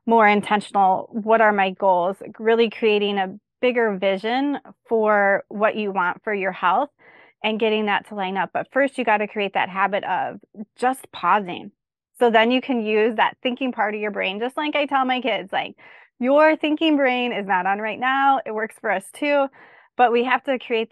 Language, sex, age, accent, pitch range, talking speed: English, female, 20-39, American, 200-240 Hz, 200 wpm